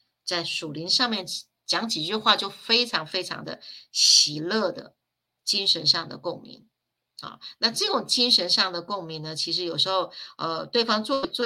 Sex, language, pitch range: female, Chinese, 175-230 Hz